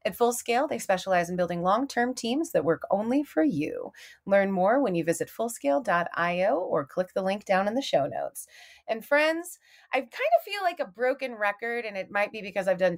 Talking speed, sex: 210 wpm, female